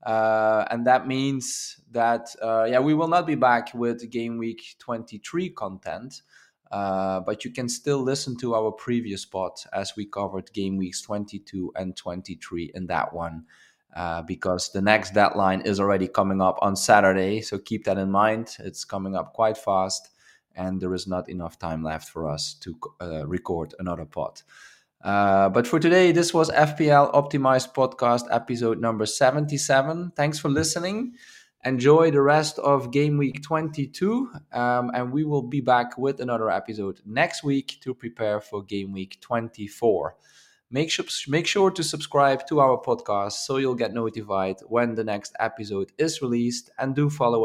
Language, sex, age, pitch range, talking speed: English, male, 20-39, 100-140 Hz, 170 wpm